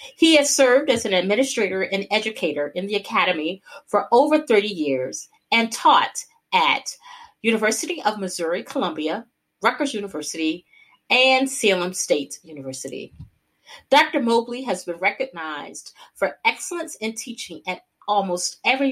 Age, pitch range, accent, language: 40-59, 185-270 Hz, American, English